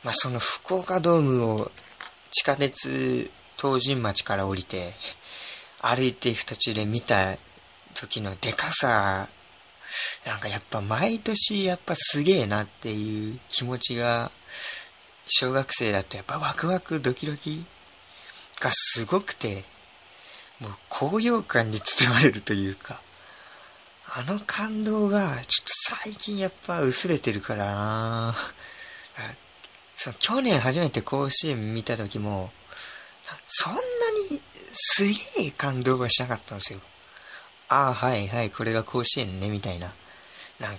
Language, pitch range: Japanese, 105-160 Hz